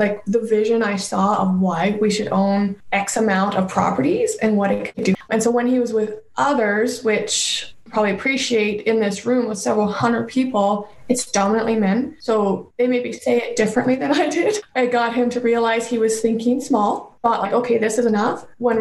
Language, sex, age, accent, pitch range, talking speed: English, female, 20-39, American, 205-245 Hz, 205 wpm